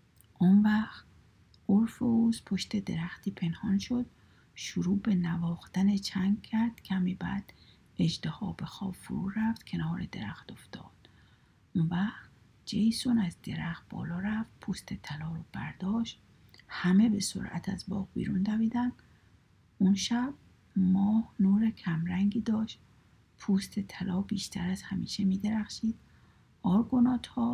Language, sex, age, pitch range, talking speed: Persian, female, 50-69, 185-225 Hz, 120 wpm